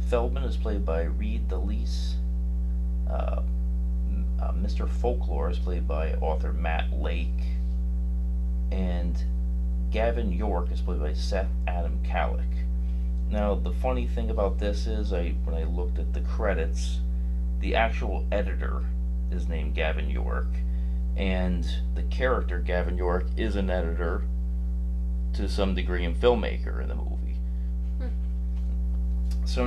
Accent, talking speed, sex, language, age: American, 130 wpm, male, English, 30-49